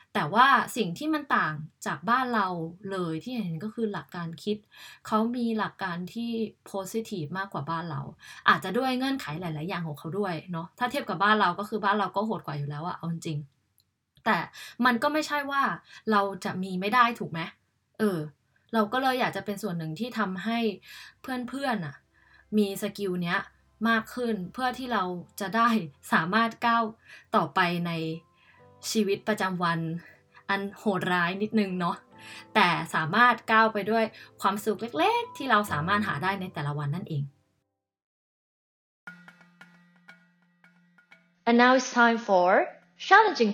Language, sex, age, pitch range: Thai, female, 20-39, 175-230 Hz